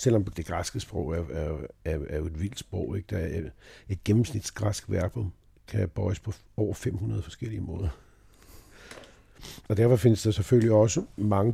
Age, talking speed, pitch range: 60-79, 165 wpm, 95-110 Hz